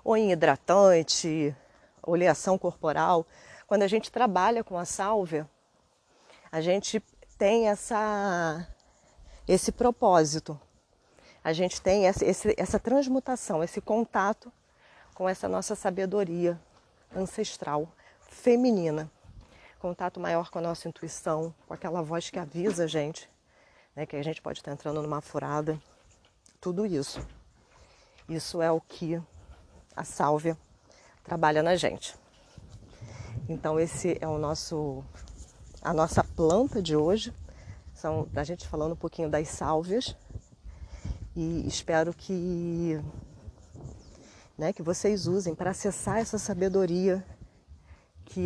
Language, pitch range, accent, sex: Portuguese, 155-195 Hz, Brazilian, female